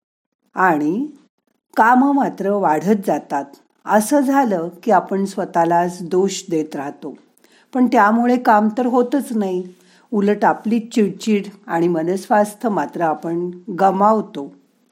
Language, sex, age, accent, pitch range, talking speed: Marathi, female, 50-69, native, 175-240 Hz, 110 wpm